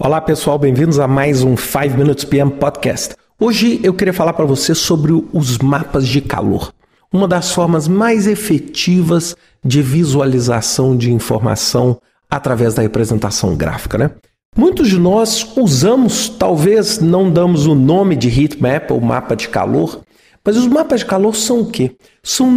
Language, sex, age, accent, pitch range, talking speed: Portuguese, male, 50-69, Brazilian, 140-225 Hz, 155 wpm